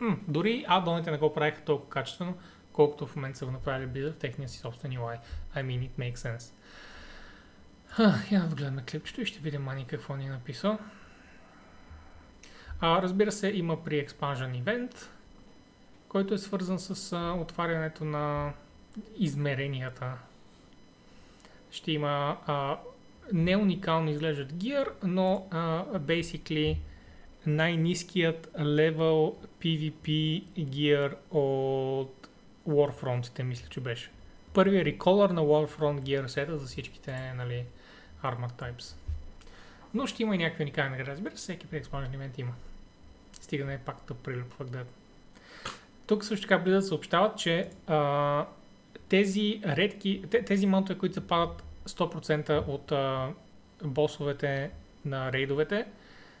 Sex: male